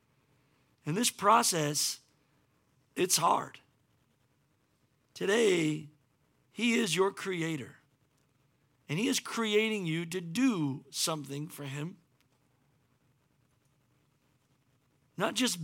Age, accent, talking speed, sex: 50-69, American, 85 wpm, male